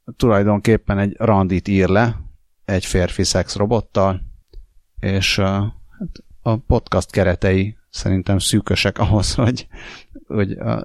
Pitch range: 95-110 Hz